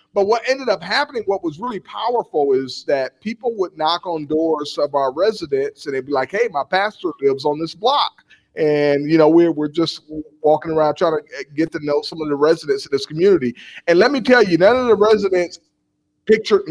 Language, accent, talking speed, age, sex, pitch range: English, American, 215 wpm, 40-59, male, 135-180 Hz